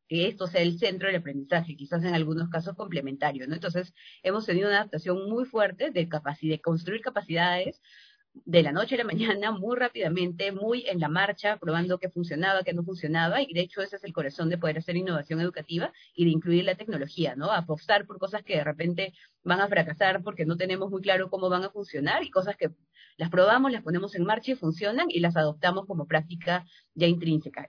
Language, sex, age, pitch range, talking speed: Spanish, female, 30-49, 160-190 Hz, 210 wpm